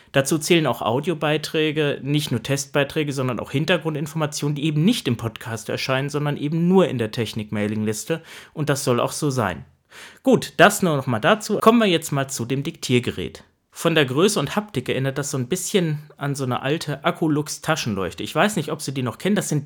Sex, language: male, German